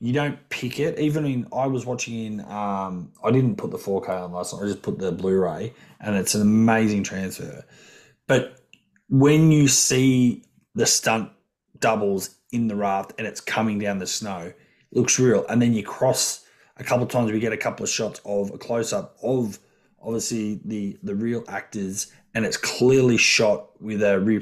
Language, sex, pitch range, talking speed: English, male, 100-130 Hz, 195 wpm